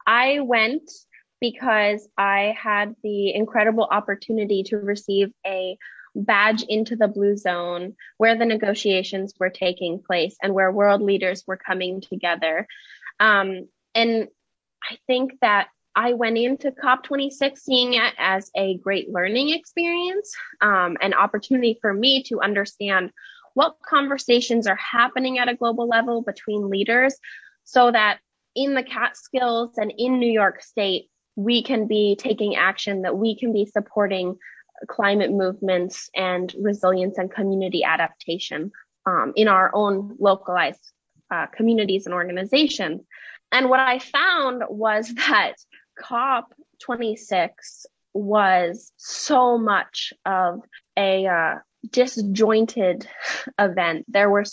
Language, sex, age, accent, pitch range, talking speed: English, female, 10-29, American, 190-245 Hz, 125 wpm